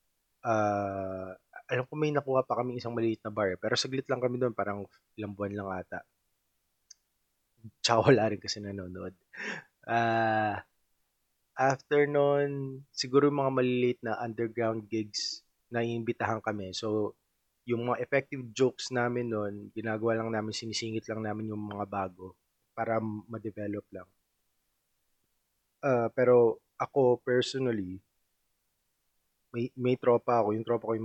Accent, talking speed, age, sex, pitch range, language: native, 130 wpm, 20-39, male, 105-120 Hz, Filipino